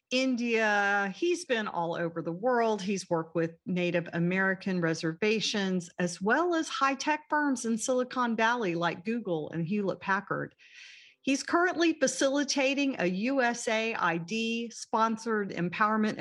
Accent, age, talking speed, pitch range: American, 40-59, 120 wpm, 170-230 Hz